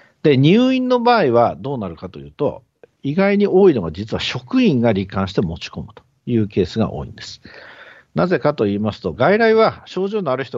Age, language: 50-69, Japanese